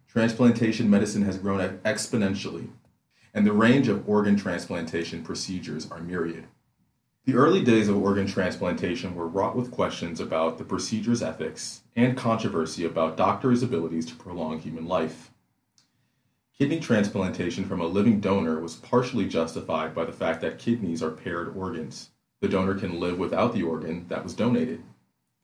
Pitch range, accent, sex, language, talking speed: 90-115 Hz, American, male, English, 150 wpm